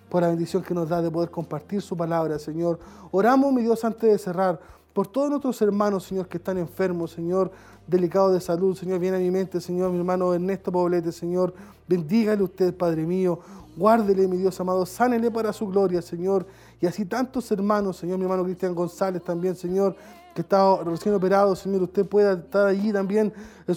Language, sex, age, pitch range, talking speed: Spanish, male, 20-39, 180-215 Hz, 190 wpm